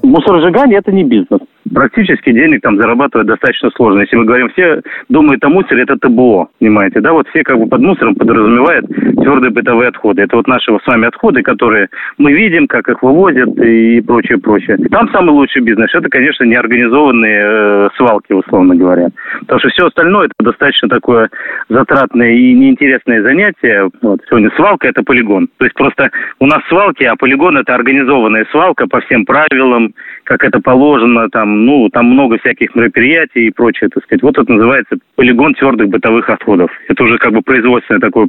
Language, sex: Russian, male